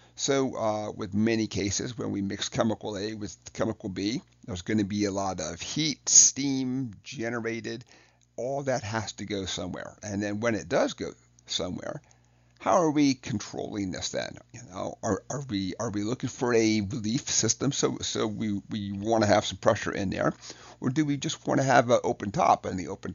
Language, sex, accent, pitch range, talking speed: English, male, American, 100-115 Hz, 200 wpm